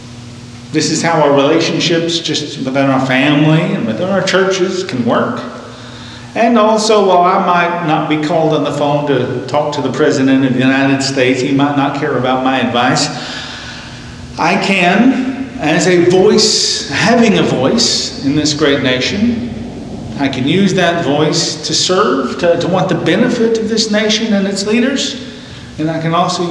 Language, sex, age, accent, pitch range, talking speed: English, male, 40-59, American, 125-175 Hz, 170 wpm